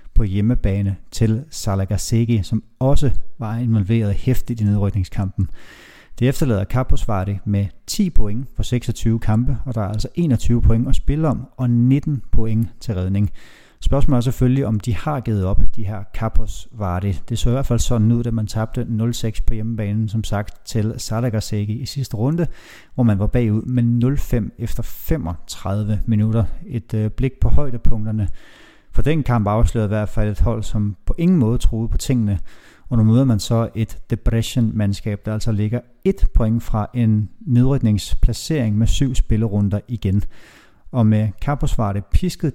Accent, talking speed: native, 165 wpm